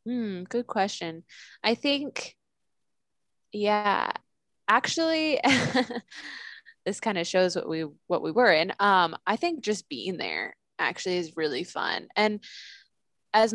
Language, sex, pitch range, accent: English, female, 160-200 Hz, American